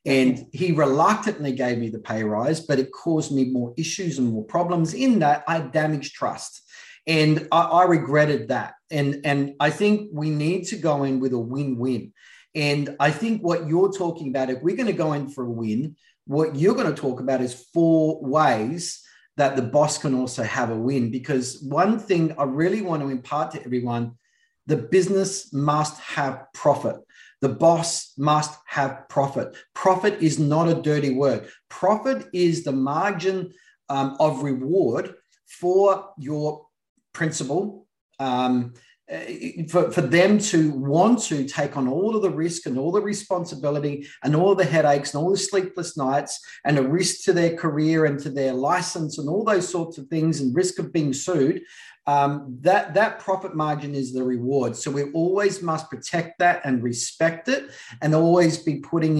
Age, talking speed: 30-49, 180 wpm